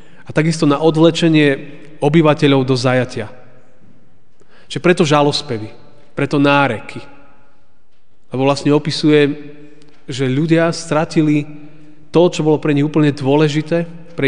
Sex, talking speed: male, 110 wpm